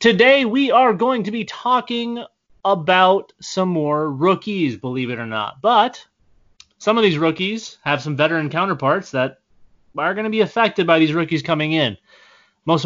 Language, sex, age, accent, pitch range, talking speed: English, male, 30-49, American, 120-160 Hz, 170 wpm